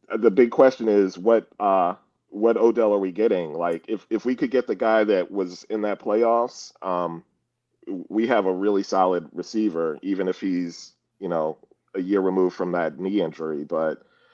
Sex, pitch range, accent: male, 90-115 Hz, American